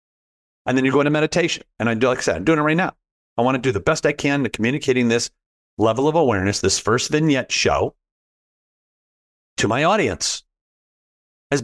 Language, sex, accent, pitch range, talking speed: English, male, American, 100-135 Hz, 200 wpm